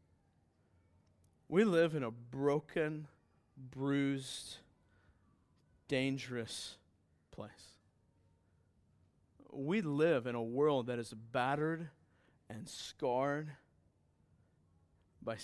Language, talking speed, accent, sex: English, 75 wpm, American, male